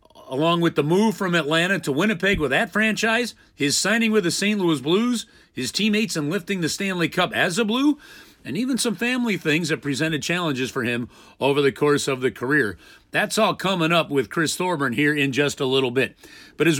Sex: male